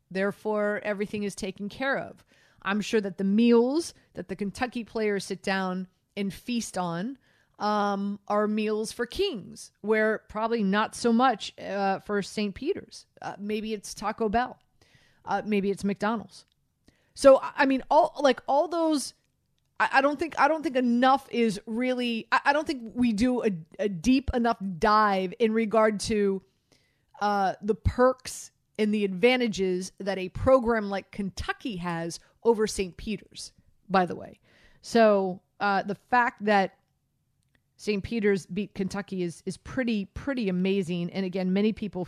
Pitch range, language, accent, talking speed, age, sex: 180-230 Hz, English, American, 155 wpm, 30-49, female